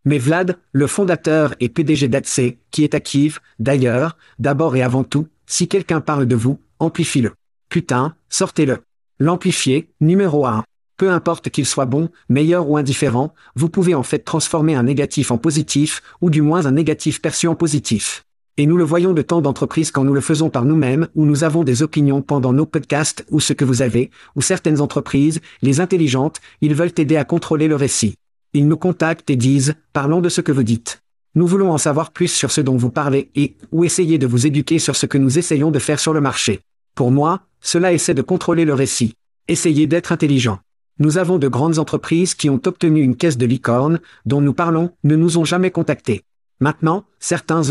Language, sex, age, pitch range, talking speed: French, male, 50-69, 140-165 Hz, 200 wpm